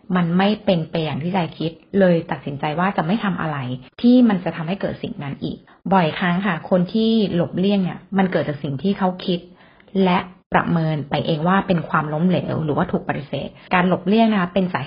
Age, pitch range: 20-39, 160-200 Hz